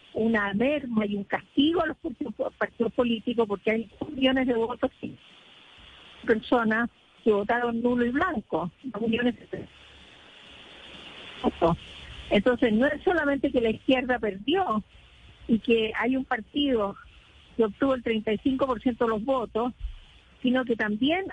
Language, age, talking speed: Spanish, 50-69, 130 wpm